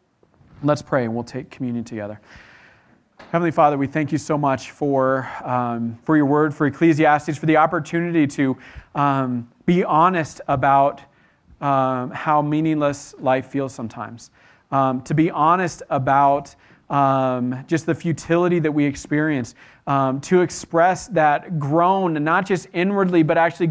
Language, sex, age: English, male, 40-59